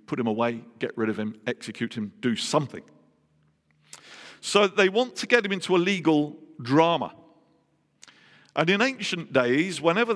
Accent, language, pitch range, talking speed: British, English, 110-160 Hz, 155 wpm